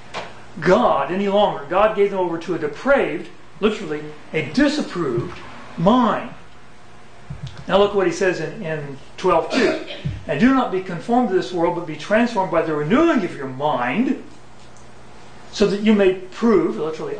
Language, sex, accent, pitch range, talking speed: English, male, American, 170-235 Hz, 155 wpm